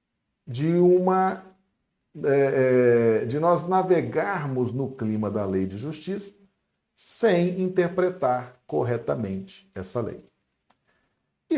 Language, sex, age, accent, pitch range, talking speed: Portuguese, male, 50-69, Brazilian, 120-180 Hz, 90 wpm